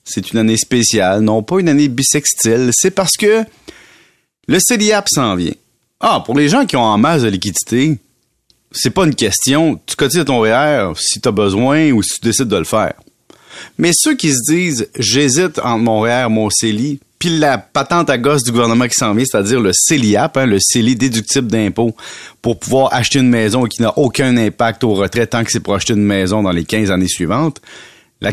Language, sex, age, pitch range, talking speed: French, male, 30-49, 115-165 Hz, 215 wpm